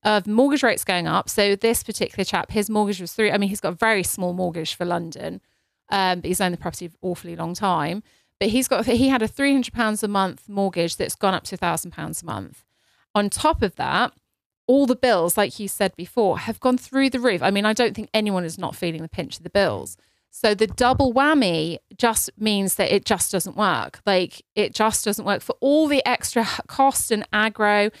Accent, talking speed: British, 230 wpm